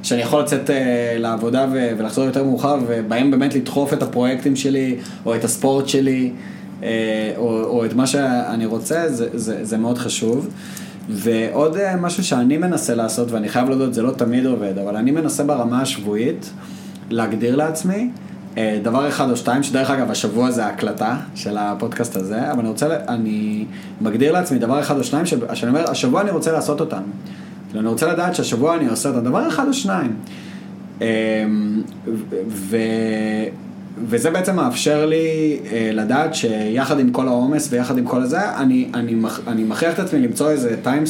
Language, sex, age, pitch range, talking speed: Hebrew, male, 20-39, 115-150 Hz, 160 wpm